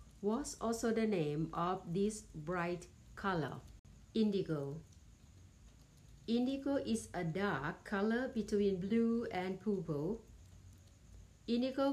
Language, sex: Thai, female